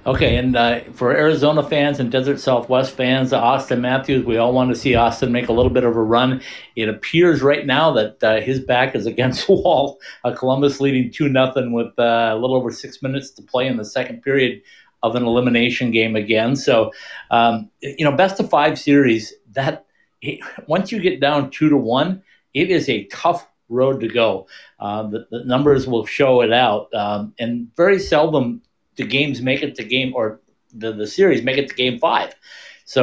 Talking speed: 195 wpm